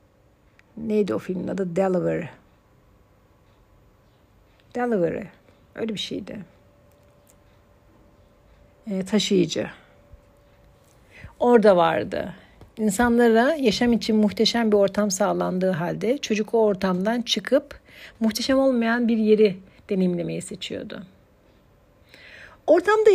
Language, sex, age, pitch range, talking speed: Turkish, female, 60-79, 190-260 Hz, 80 wpm